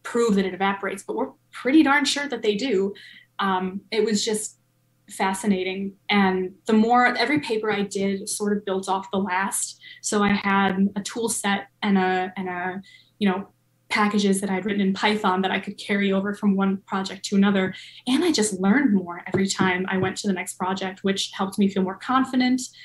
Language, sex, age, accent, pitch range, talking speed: English, female, 20-39, American, 195-215 Hz, 200 wpm